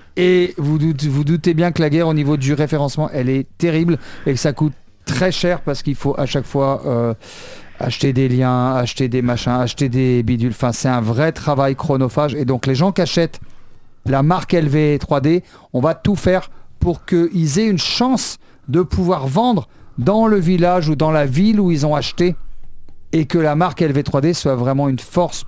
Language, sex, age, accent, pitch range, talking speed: French, male, 50-69, French, 125-165 Hz, 195 wpm